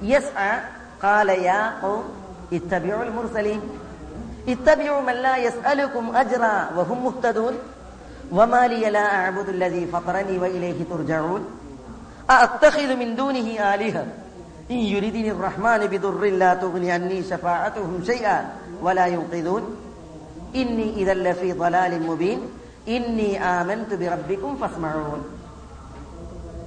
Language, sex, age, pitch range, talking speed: Malayalam, female, 40-59, 175-235 Hz, 100 wpm